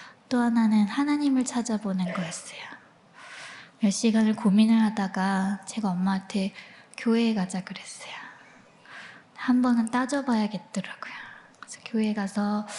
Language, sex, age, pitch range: Korean, female, 20-39, 200-240 Hz